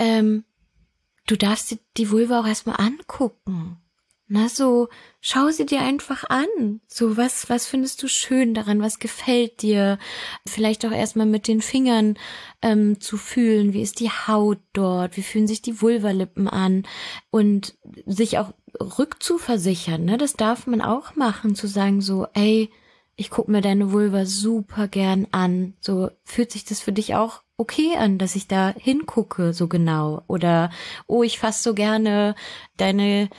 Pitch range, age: 190-230 Hz, 20-39